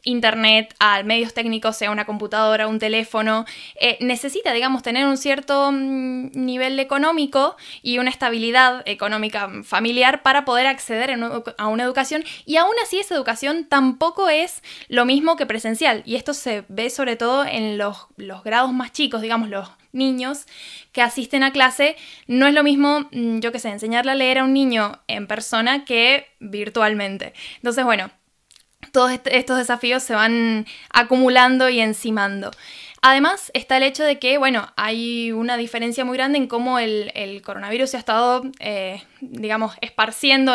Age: 10-29